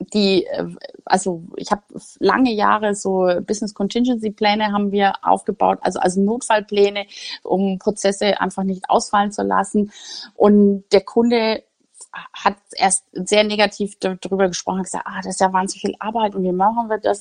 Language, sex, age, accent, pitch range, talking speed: English, female, 30-49, German, 190-220 Hz, 155 wpm